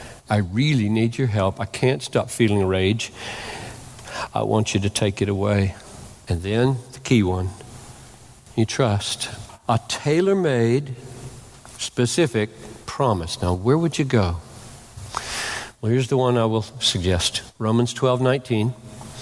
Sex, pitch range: male, 110-140 Hz